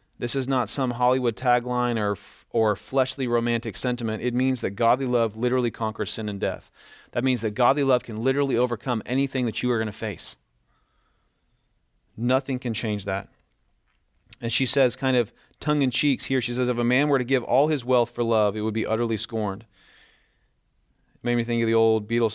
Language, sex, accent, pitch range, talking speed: English, male, American, 105-125 Hz, 200 wpm